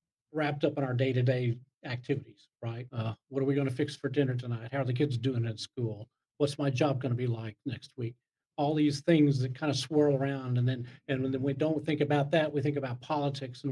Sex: male